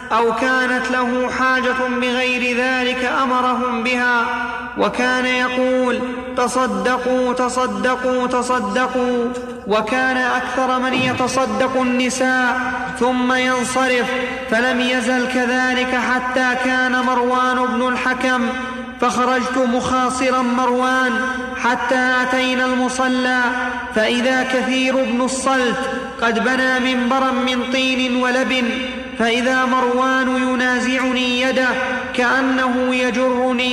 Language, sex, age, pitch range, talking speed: Arabic, male, 30-49, 250-260 Hz, 90 wpm